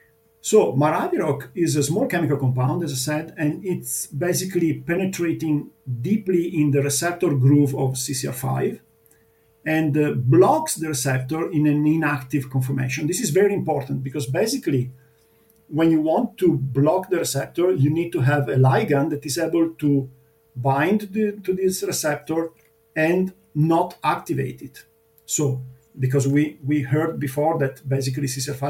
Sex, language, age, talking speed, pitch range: male, English, 50-69, 145 wpm, 130-160 Hz